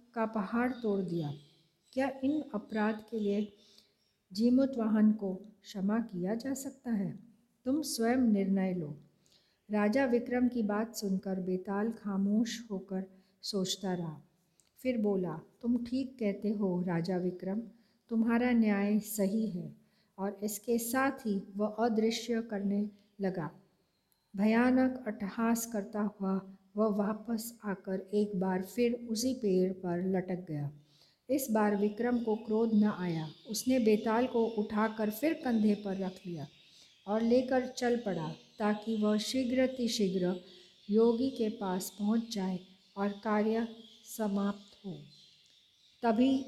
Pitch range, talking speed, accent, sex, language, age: 190-230 Hz, 125 wpm, native, female, Hindi, 50-69